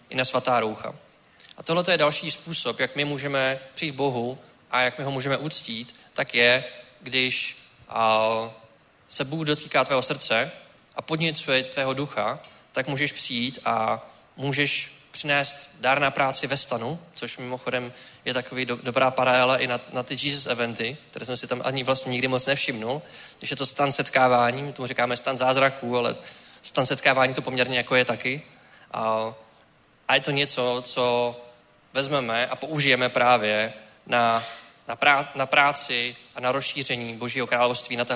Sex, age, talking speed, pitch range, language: male, 20-39, 160 wpm, 120-140 Hz, Czech